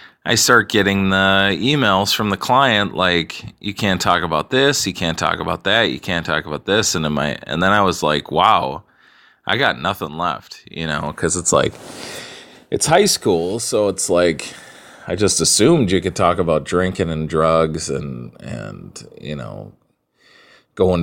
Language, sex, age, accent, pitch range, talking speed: English, male, 30-49, American, 80-100 Hz, 175 wpm